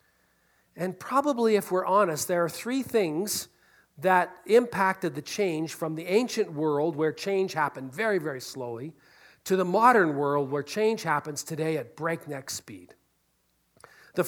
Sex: male